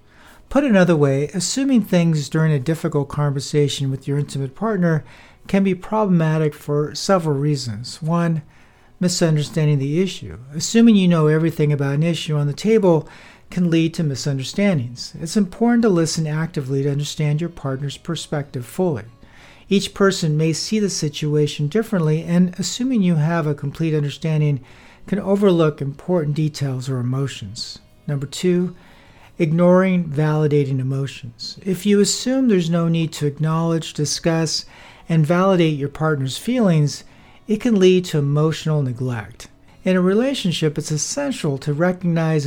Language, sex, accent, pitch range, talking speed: English, male, American, 145-180 Hz, 140 wpm